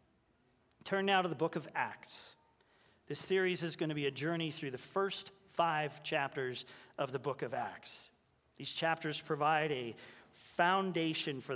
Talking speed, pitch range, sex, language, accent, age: 160 wpm, 145-170 Hz, male, English, American, 40-59